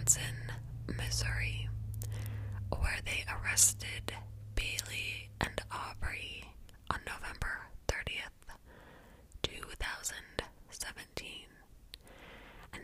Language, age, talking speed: English, 20-39, 55 wpm